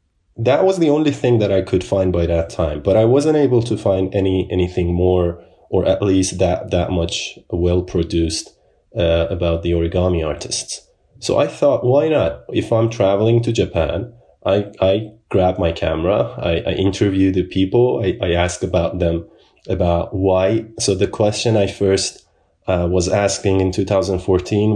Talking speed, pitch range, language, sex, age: 170 wpm, 85-100 Hz, English, male, 30-49